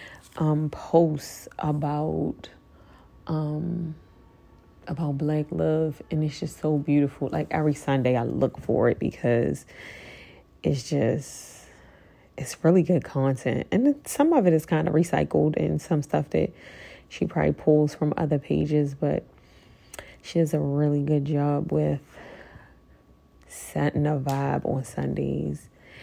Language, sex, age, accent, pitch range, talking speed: English, female, 30-49, American, 135-160 Hz, 130 wpm